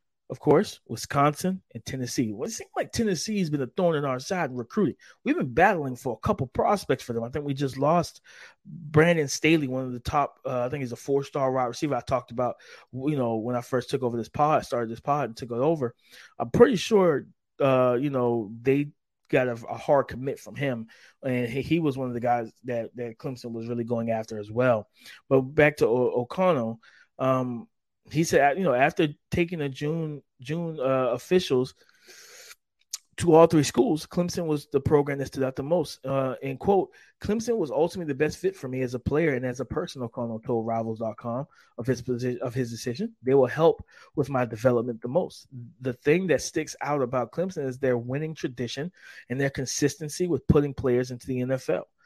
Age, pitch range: 20-39, 125-155 Hz